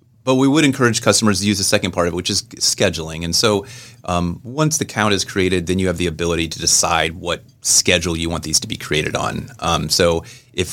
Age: 30-49